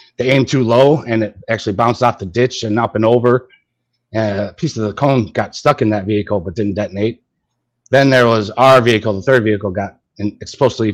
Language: English